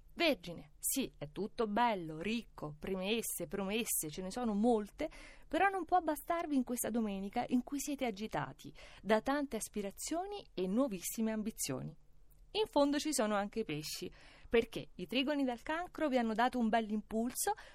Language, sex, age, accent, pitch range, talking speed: Italian, female, 30-49, native, 195-270 Hz, 160 wpm